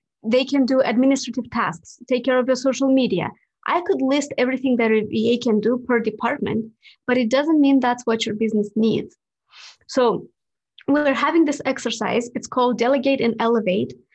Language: English